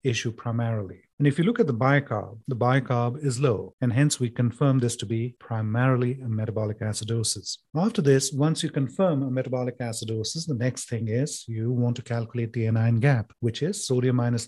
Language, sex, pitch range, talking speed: English, male, 115-140 Hz, 195 wpm